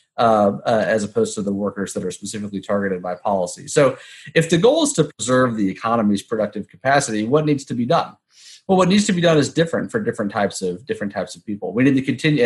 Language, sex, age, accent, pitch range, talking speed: English, male, 30-49, American, 100-145 Hz, 235 wpm